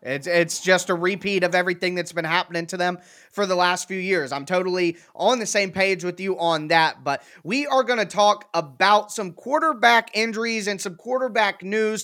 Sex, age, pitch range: male, 20-39, 180-210 Hz